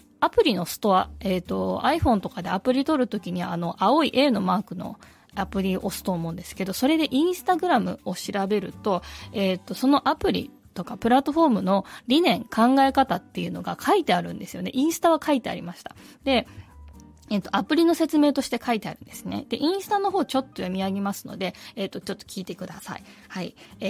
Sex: female